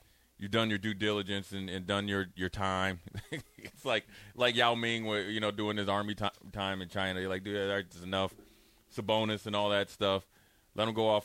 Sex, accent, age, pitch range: male, American, 30-49, 95-110 Hz